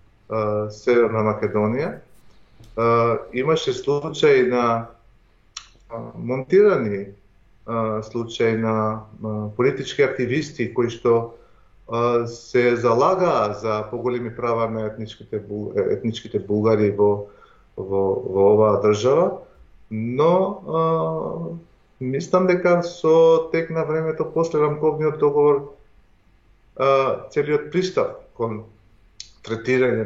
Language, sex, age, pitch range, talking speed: English, male, 30-49, 105-130 Hz, 80 wpm